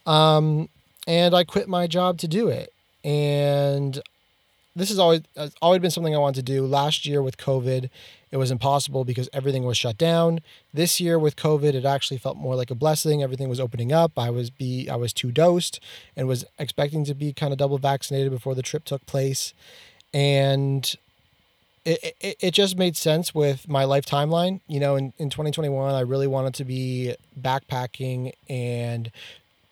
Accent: American